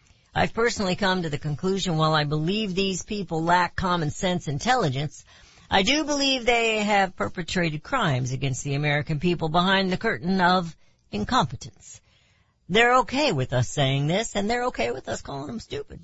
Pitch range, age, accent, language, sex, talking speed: 135-195 Hz, 60-79, American, English, female, 170 wpm